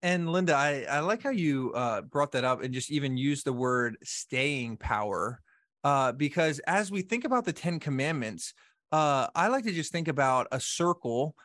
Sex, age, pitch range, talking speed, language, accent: male, 20-39, 135-170 Hz, 195 wpm, English, American